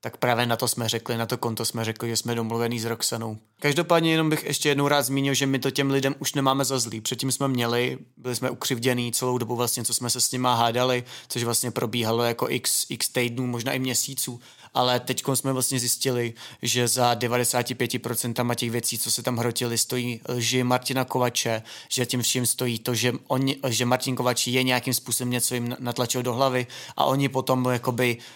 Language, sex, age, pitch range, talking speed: Czech, male, 30-49, 120-130 Hz, 205 wpm